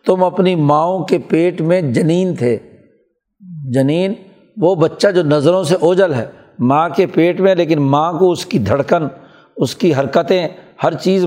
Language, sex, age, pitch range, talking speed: Urdu, male, 60-79, 155-185 Hz, 165 wpm